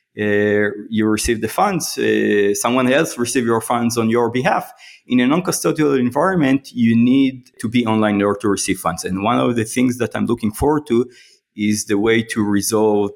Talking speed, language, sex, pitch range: 195 wpm, English, male, 100-120 Hz